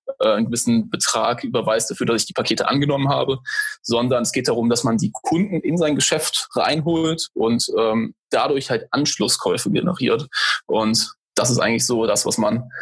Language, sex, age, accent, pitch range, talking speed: German, male, 20-39, German, 125-155 Hz, 175 wpm